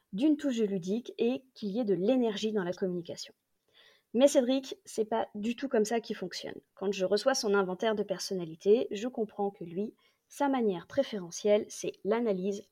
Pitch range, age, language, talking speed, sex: 195-245 Hz, 30-49, French, 180 wpm, female